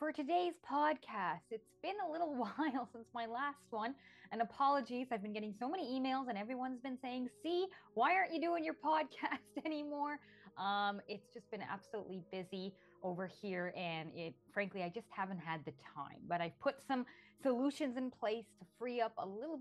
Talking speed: 185 wpm